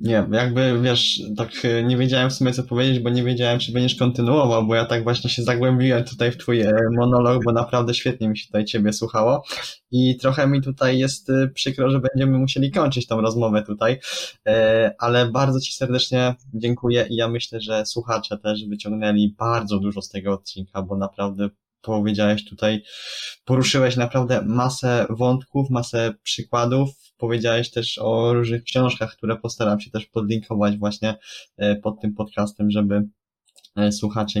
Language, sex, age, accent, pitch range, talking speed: Polish, male, 20-39, native, 105-125 Hz, 155 wpm